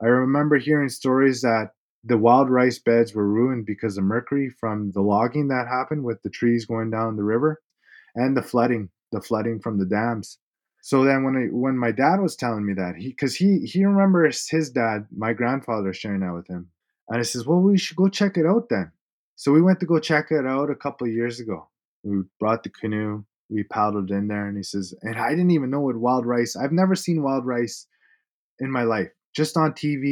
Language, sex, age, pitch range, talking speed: English, male, 20-39, 110-145 Hz, 225 wpm